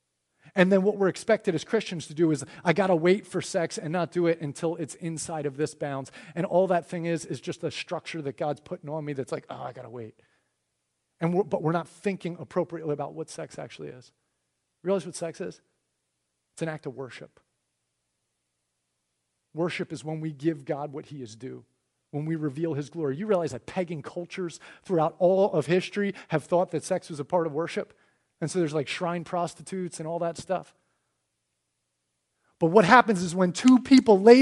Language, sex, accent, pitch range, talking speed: English, male, American, 150-205 Hz, 205 wpm